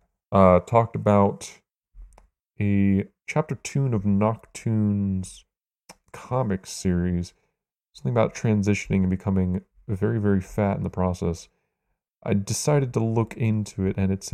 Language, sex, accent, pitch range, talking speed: English, male, American, 90-110 Hz, 120 wpm